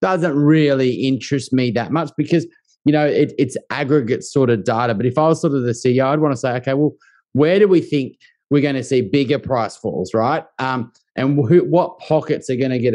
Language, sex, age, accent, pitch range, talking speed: English, male, 30-49, Australian, 120-150 Hz, 220 wpm